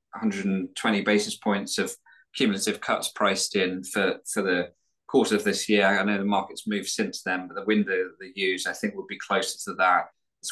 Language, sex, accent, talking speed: English, male, British, 205 wpm